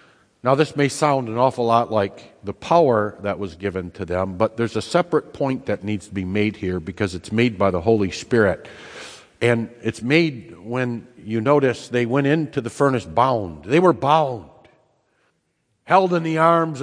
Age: 50-69